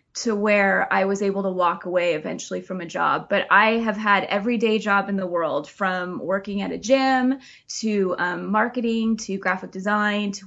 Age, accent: 20-39, American